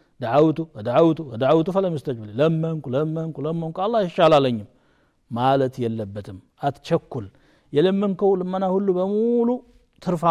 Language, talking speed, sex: Amharic, 120 wpm, male